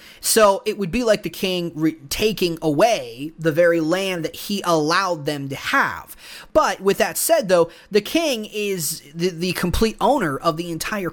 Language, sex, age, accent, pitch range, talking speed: English, male, 30-49, American, 155-210 Hz, 180 wpm